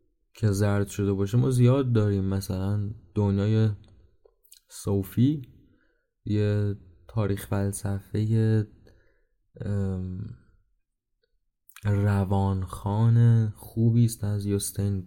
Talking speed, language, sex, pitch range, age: 70 wpm, Persian, male, 100-120 Hz, 20-39